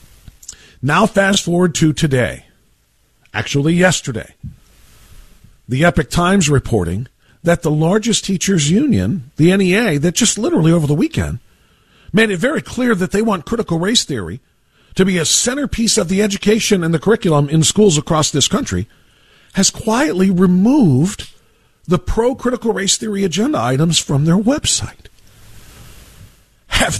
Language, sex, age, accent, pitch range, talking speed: English, male, 50-69, American, 150-220 Hz, 140 wpm